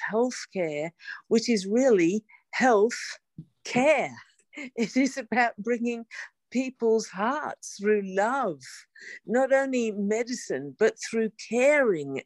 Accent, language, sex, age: British, English, female, 50-69